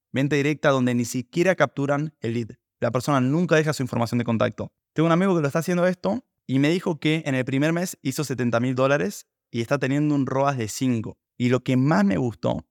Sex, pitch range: male, 120-140 Hz